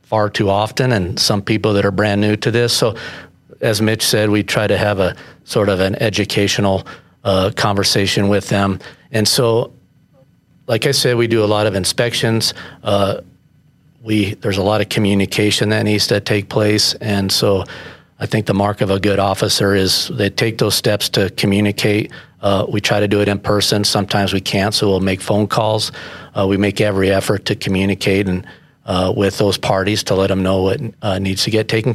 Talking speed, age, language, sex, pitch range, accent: 200 wpm, 40-59, English, male, 100-110 Hz, American